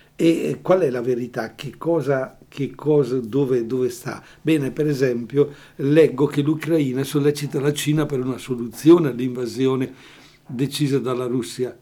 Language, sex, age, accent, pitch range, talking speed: Italian, male, 60-79, native, 130-150 Hz, 140 wpm